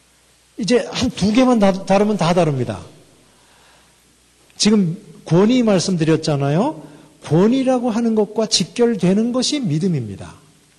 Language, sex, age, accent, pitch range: Korean, male, 50-69, native, 155-235 Hz